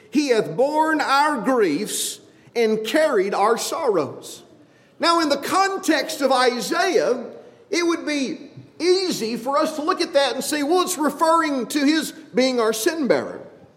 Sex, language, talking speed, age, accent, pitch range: male, English, 155 wpm, 50-69, American, 220-320 Hz